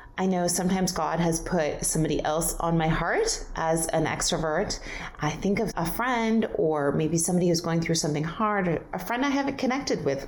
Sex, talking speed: female, 195 wpm